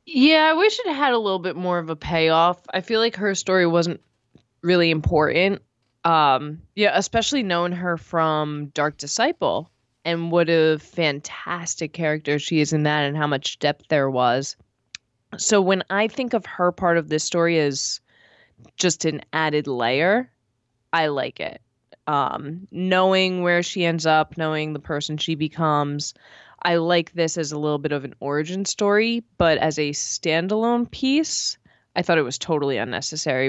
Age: 20-39